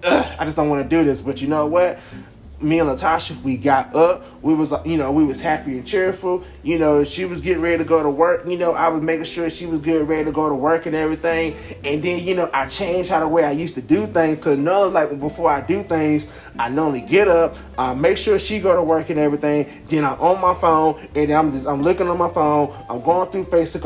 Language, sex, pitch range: English, male, 145-175 Hz